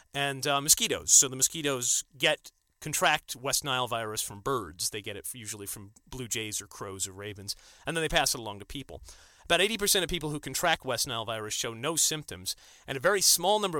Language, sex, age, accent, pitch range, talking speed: English, male, 30-49, American, 115-155 Hz, 210 wpm